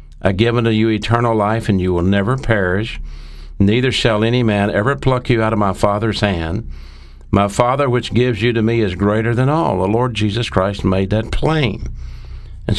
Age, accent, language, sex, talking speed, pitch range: 60-79, American, English, male, 195 wpm, 85-115 Hz